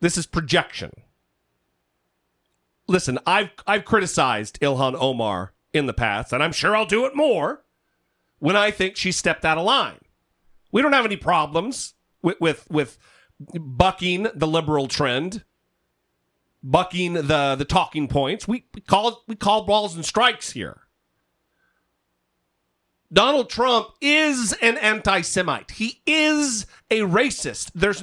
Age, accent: 40-59, American